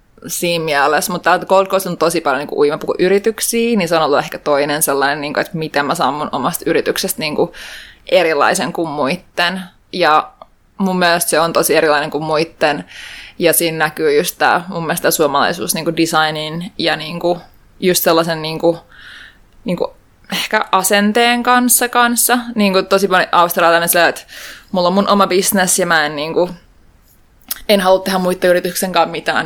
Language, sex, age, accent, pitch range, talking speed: Finnish, female, 20-39, native, 165-200 Hz, 145 wpm